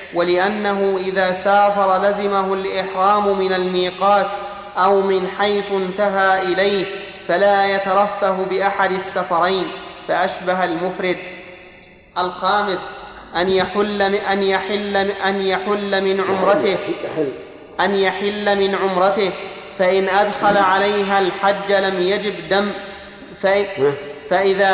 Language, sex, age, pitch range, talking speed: Arabic, male, 30-49, 185-200 Hz, 100 wpm